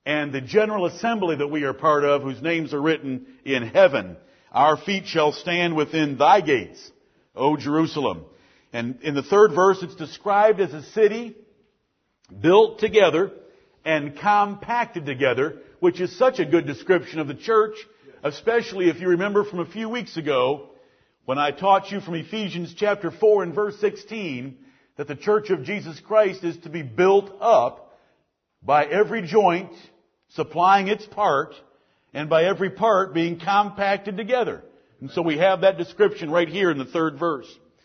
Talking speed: 165 wpm